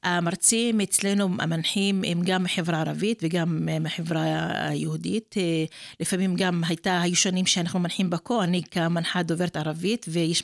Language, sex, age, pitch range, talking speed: Hebrew, female, 30-49, 170-210 Hz, 125 wpm